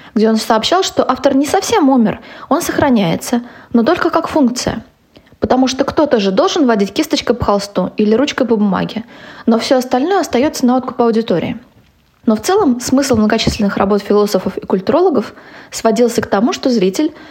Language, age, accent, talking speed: Russian, 20-39, native, 165 wpm